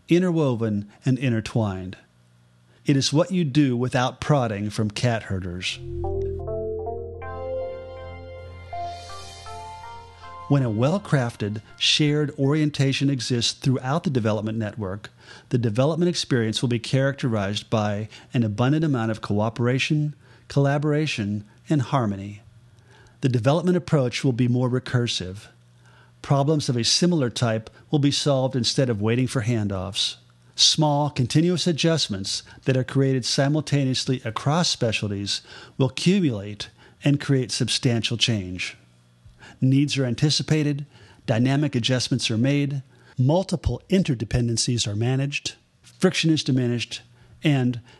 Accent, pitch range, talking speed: American, 110-140 Hz, 110 wpm